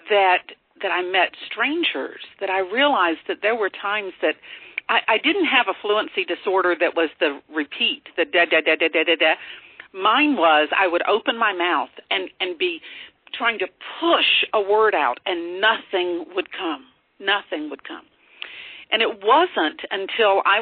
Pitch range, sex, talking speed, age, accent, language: 190-320 Hz, female, 155 wpm, 50-69, American, English